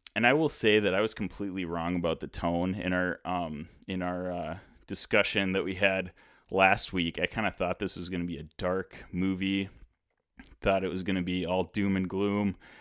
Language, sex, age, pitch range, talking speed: English, male, 30-49, 90-110 Hz, 215 wpm